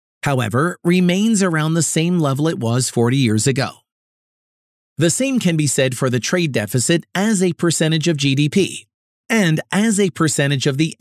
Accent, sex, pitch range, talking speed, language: American, male, 130-180 Hz, 170 wpm, English